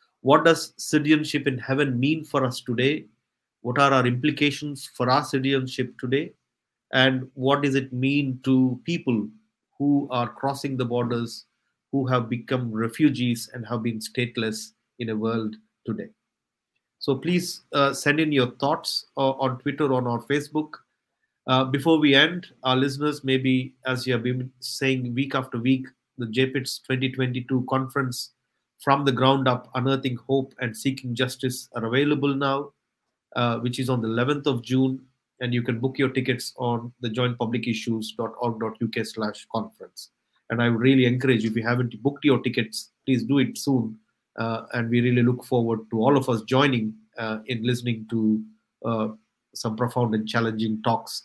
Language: English